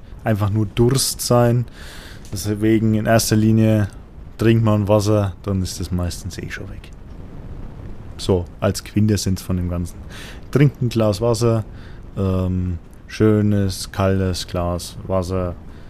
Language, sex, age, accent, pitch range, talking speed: German, male, 20-39, German, 95-120 Hz, 125 wpm